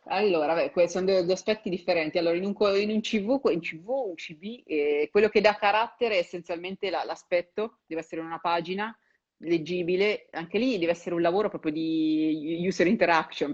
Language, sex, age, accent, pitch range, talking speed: Italian, female, 30-49, native, 155-195 Hz, 165 wpm